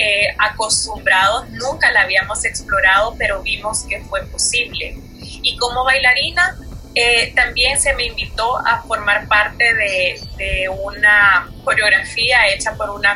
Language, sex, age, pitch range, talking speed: Spanish, female, 20-39, 210-275 Hz, 130 wpm